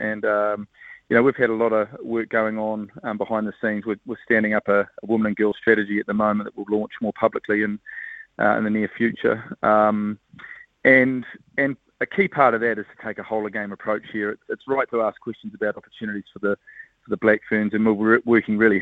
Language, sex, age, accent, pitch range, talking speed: English, male, 30-49, Australian, 105-110 Hz, 235 wpm